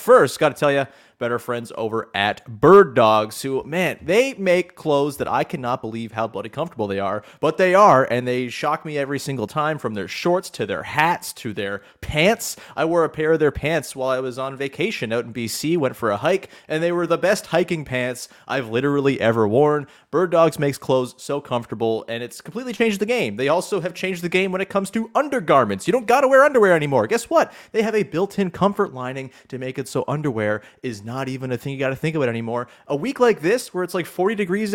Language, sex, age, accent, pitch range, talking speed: English, male, 30-49, American, 125-185 Hz, 235 wpm